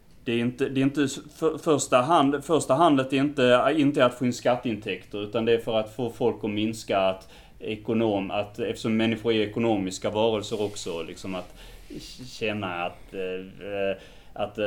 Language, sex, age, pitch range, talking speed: Swedish, male, 30-49, 100-125 Hz, 170 wpm